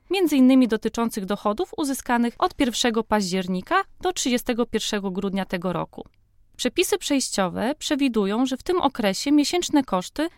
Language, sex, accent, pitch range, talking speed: Polish, female, native, 205-285 Hz, 125 wpm